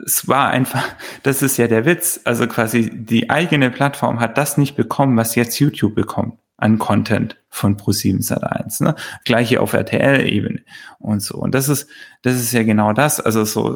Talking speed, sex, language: 185 wpm, male, German